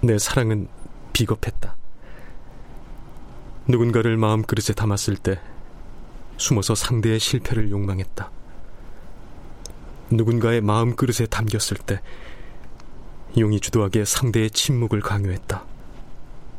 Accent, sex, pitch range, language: native, male, 100-115 Hz, Korean